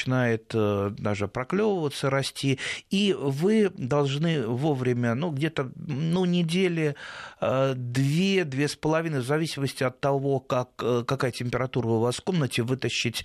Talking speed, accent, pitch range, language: 115 wpm, native, 120-160 Hz, Russian